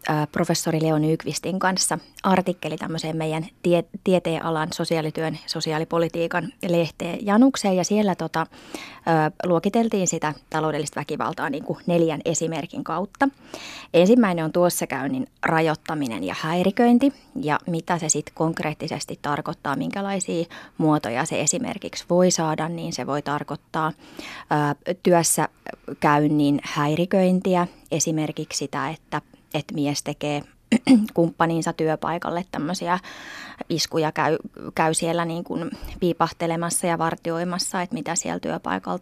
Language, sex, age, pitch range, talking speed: Finnish, female, 20-39, 155-185 Hz, 115 wpm